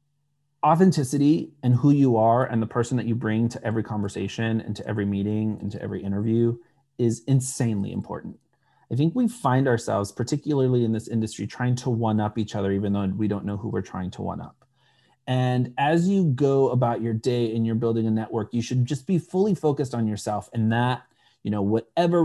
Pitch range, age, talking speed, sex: 110-135 Hz, 30-49, 200 wpm, male